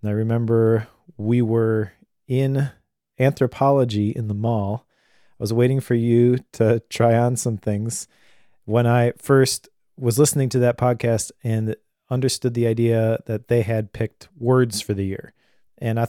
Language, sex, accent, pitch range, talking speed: English, male, American, 110-125 Hz, 155 wpm